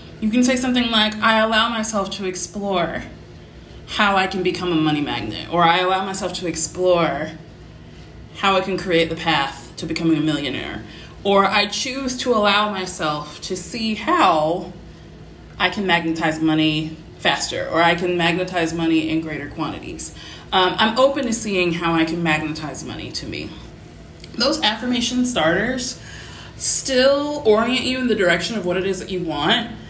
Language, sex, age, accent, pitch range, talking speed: English, female, 20-39, American, 170-215 Hz, 165 wpm